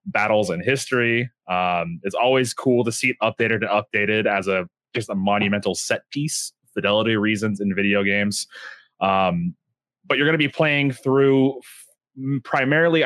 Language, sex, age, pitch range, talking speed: English, male, 20-39, 105-130 Hz, 155 wpm